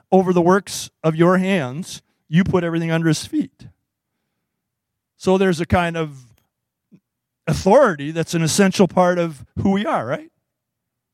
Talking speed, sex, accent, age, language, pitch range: 145 wpm, male, American, 40-59, English, 170-220 Hz